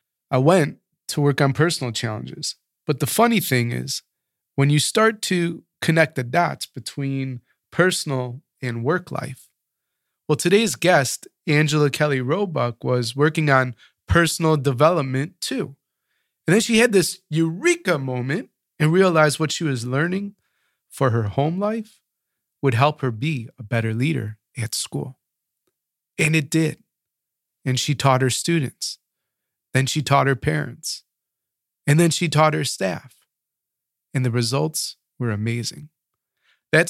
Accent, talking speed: American, 140 wpm